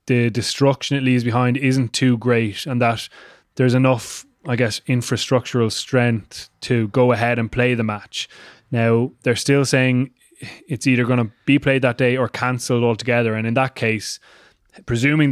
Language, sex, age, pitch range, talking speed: English, male, 20-39, 115-125 Hz, 170 wpm